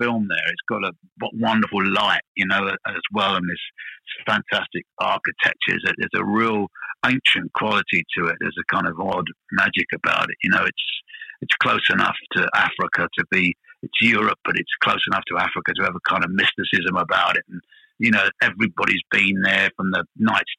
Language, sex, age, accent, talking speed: English, male, 50-69, British, 190 wpm